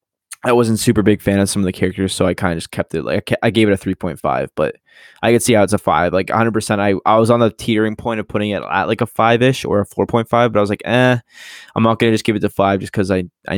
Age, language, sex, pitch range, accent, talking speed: 20-39, English, male, 95-115 Hz, American, 325 wpm